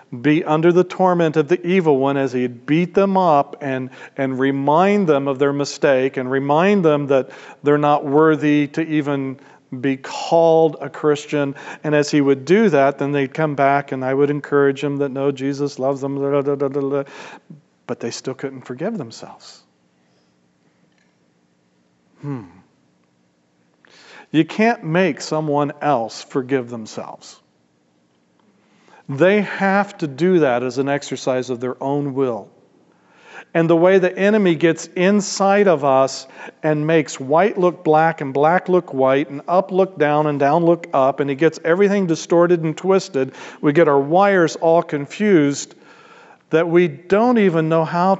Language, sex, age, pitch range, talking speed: English, male, 50-69, 135-170 Hz, 160 wpm